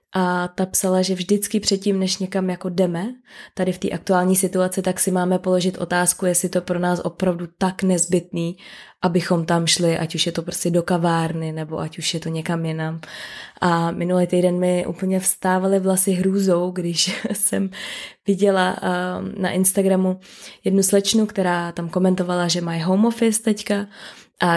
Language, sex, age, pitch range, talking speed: Czech, female, 20-39, 165-185 Hz, 170 wpm